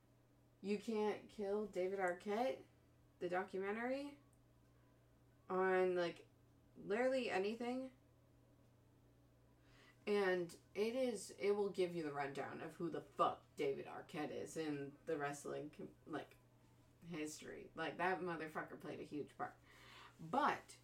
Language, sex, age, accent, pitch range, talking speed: English, female, 20-39, American, 155-210 Hz, 115 wpm